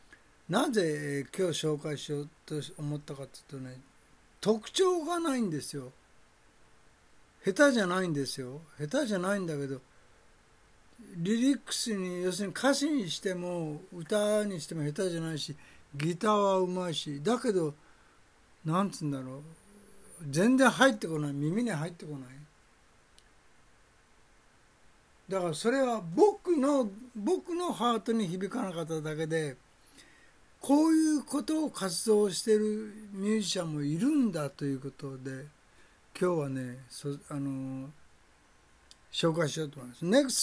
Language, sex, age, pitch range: English, male, 60-79, 150-215 Hz